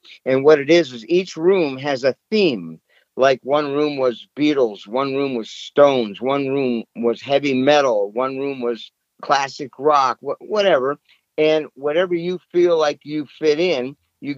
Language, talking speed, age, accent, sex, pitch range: English, 165 wpm, 50-69, American, male, 135-180 Hz